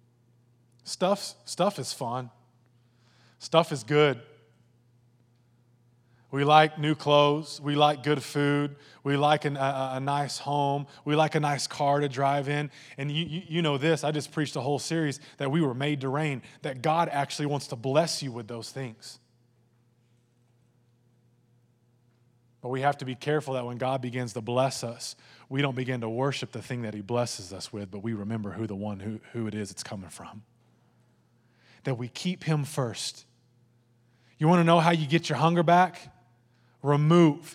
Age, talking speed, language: 20-39, 180 wpm, English